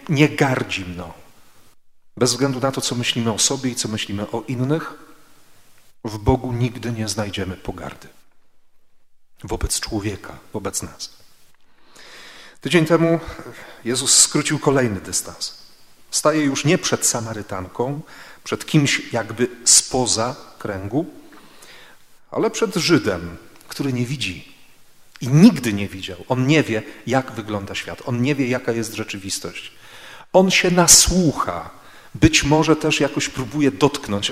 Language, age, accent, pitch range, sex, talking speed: Polish, 40-59, native, 110-145 Hz, male, 130 wpm